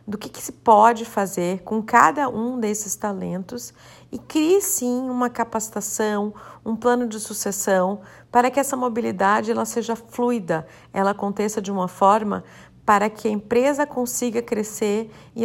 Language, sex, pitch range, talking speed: Portuguese, female, 185-235 Hz, 150 wpm